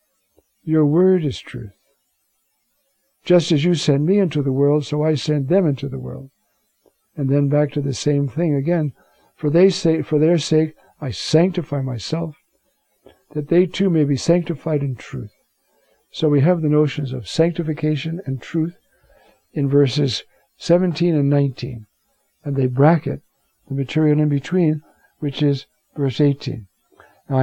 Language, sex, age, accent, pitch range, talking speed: English, male, 60-79, American, 130-160 Hz, 155 wpm